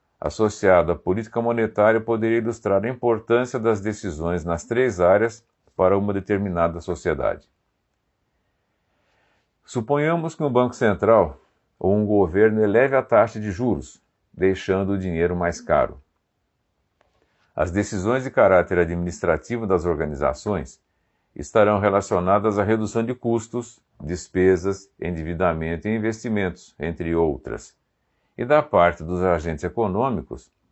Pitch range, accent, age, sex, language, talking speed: 90-115 Hz, Brazilian, 50-69, male, Portuguese, 115 wpm